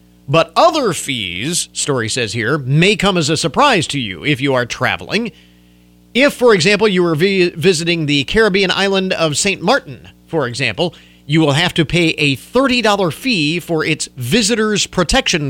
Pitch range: 120-175 Hz